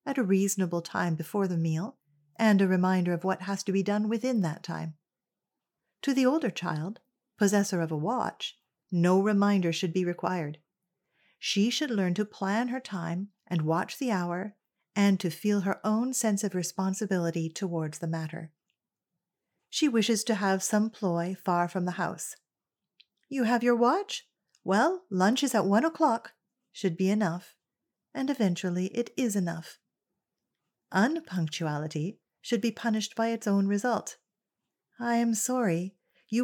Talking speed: 155 wpm